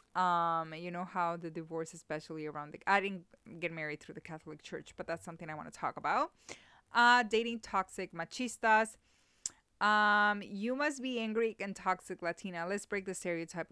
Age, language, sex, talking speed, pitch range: 20-39, English, female, 180 wpm, 170-215 Hz